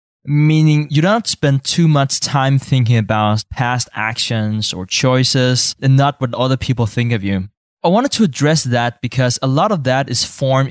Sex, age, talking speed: male, 20-39, 195 wpm